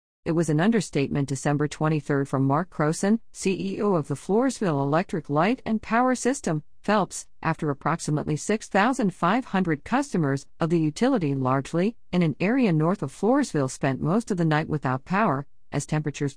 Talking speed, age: 155 wpm, 50-69